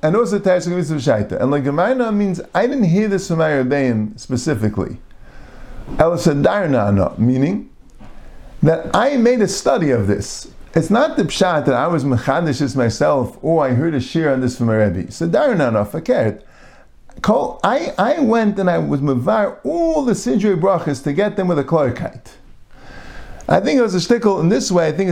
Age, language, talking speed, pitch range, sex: 50-69, English, 180 wpm, 135-200 Hz, male